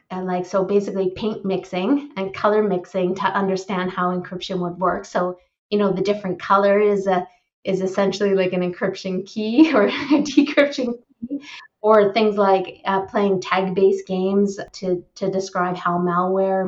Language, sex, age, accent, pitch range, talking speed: English, female, 30-49, American, 185-215 Hz, 165 wpm